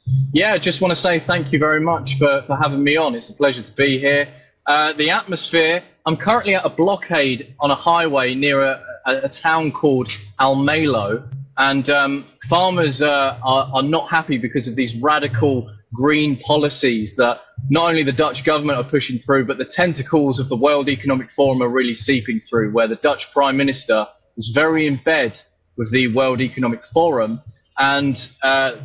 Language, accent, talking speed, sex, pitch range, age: English, British, 185 wpm, male, 125-150 Hz, 20-39